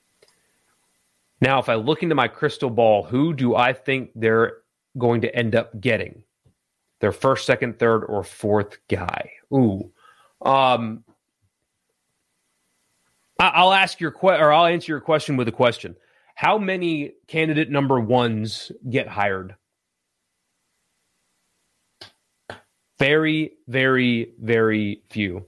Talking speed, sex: 120 wpm, male